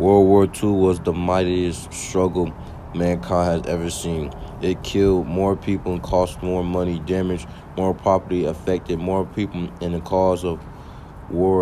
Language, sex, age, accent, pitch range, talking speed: English, male, 20-39, American, 90-100 Hz, 155 wpm